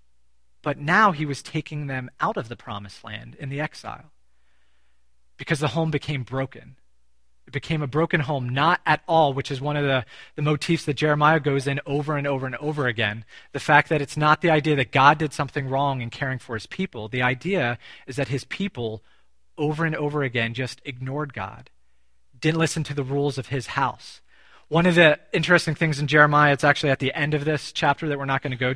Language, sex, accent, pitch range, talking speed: English, male, American, 125-155 Hz, 215 wpm